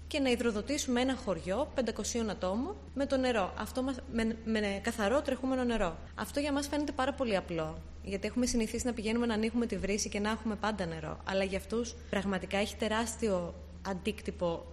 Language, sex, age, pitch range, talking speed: Greek, female, 20-39, 190-255 Hz, 185 wpm